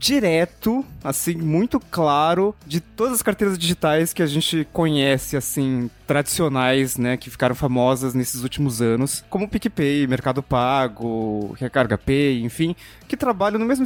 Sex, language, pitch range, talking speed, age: male, Portuguese, 135-185 Hz, 145 wpm, 20-39